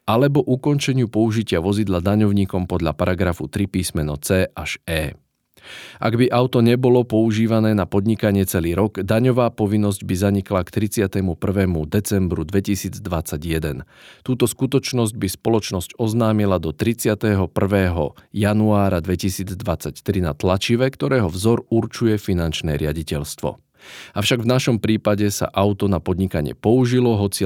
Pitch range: 90-115 Hz